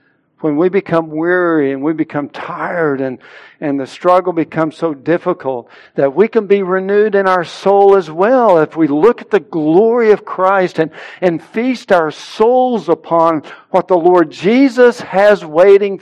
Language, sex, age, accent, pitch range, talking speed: English, male, 60-79, American, 155-200 Hz, 170 wpm